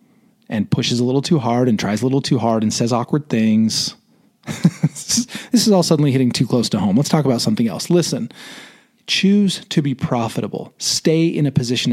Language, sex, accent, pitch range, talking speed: English, male, American, 130-185 Hz, 195 wpm